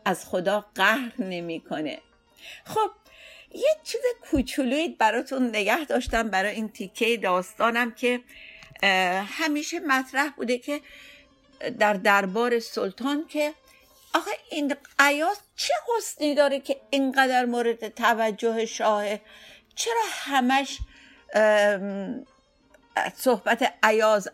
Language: Persian